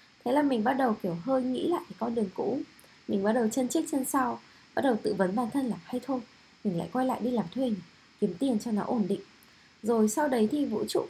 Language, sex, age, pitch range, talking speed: Vietnamese, female, 20-39, 200-265 Hz, 260 wpm